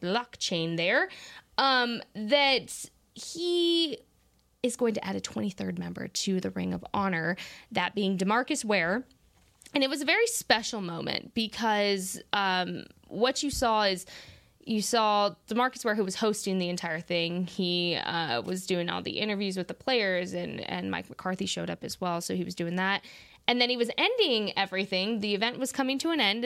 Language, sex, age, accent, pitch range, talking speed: English, female, 20-39, American, 180-235 Hz, 180 wpm